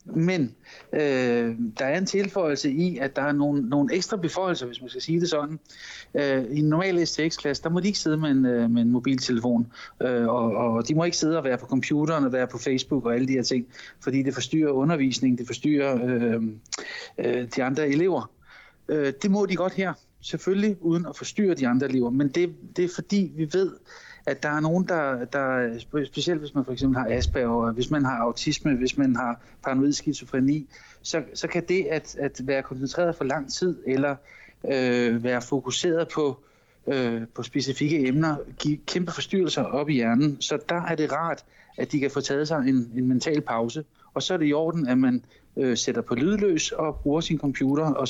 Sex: male